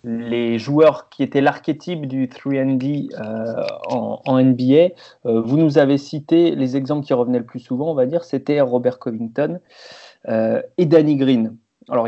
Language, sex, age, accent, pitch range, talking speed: French, male, 30-49, French, 125-145 Hz, 170 wpm